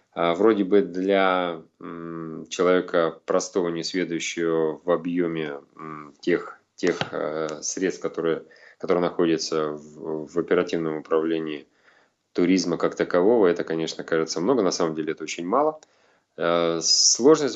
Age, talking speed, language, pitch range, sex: 20-39, 105 wpm, Russian, 80-95 Hz, male